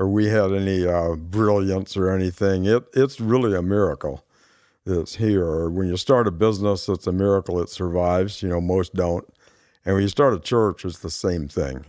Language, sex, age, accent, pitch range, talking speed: English, male, 60-79, American, 95-115 Hz, 200 wpm